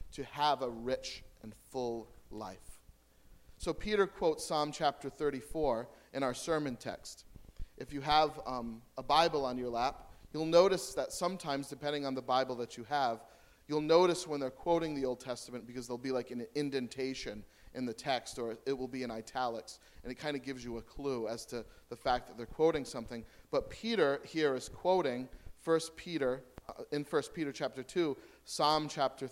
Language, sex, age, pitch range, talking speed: English, male, 40-59, 120-165 Hz, 185 wpm